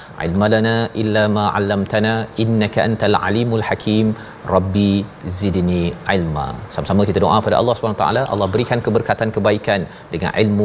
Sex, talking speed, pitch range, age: male, 85 wpm, 100-125 Hz, 40-59